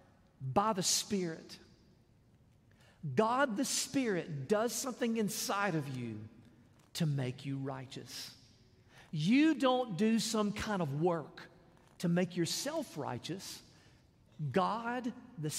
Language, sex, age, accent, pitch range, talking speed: English, male, 50-69, American, 140-210 Hz, 110 wpm